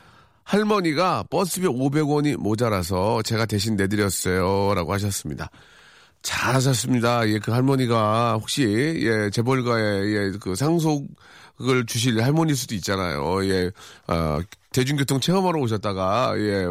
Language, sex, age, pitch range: Korean, male, 40-59, 100-135 Hz